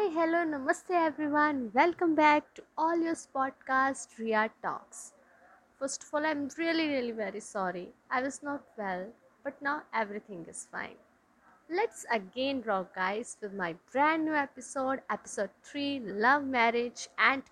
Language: Hindi